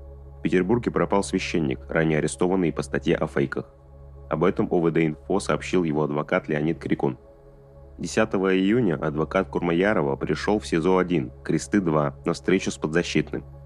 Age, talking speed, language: 30-49, 130 wpm, Russian